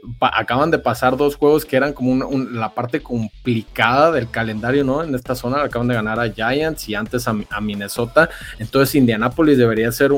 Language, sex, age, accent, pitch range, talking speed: Spanish, male, 20-39, Mexican, 115-135 Hz, 195 wpm